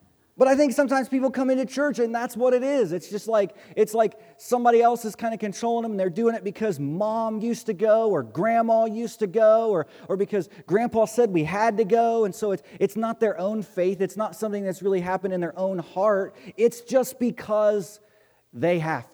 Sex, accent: male, American